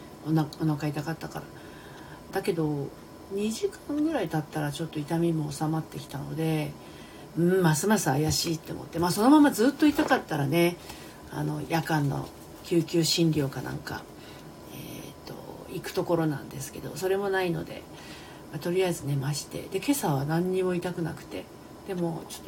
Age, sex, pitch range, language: 40-59, female, 160-205 Hz, Japanese